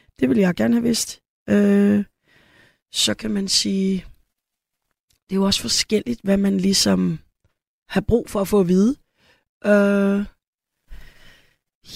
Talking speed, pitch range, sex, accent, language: 135 wpm, 175-200 Hz, female, native, Danish